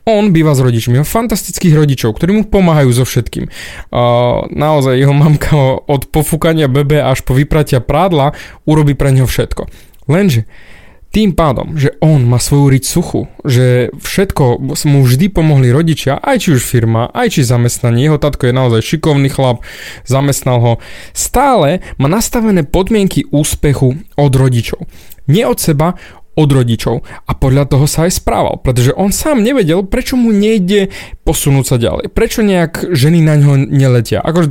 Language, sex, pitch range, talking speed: Slovak, male, 130-180 Hz, 160 wpm